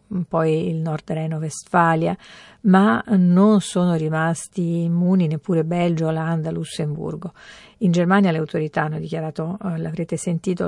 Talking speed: 125 wpm